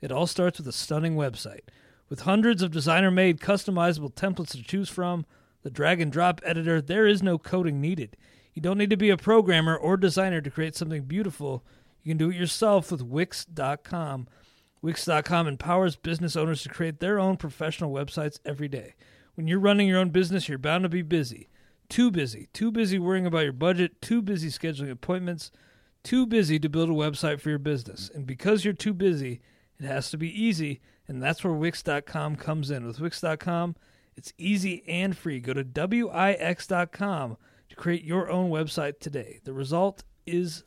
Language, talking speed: English, 185 wpm